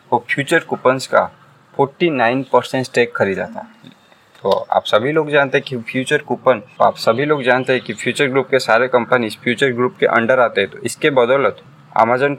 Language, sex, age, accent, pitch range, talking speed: Hindi, male, 20-39, native, 115-145 Hz, 200 wpm